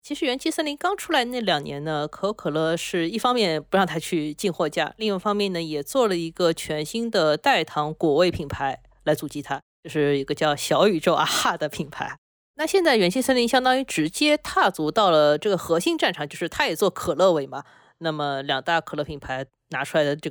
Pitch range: 145-215 Hz